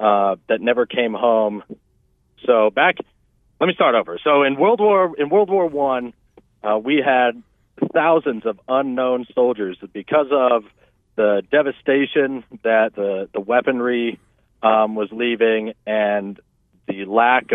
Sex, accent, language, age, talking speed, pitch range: male, American, English, 40-59, 135 wpm, 105-125 Hz